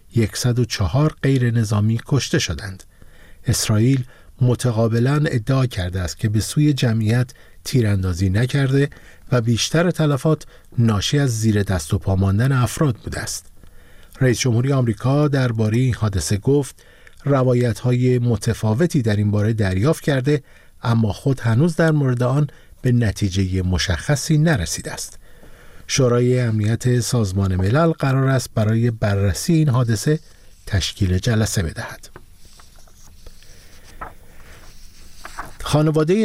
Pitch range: 100-135 Hz